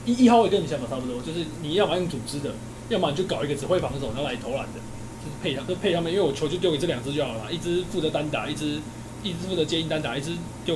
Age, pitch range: 20-39, 115-165 Hz